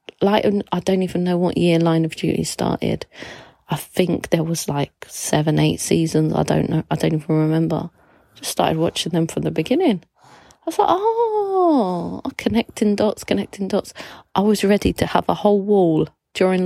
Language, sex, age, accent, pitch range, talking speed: English, female, 30-49, British, 155-185 Hz, 180 wpm